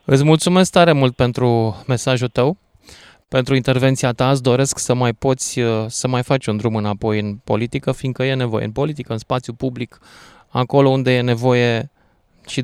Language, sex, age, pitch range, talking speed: Romanian, male, 20-39, 115-145 Hz, 170 wpm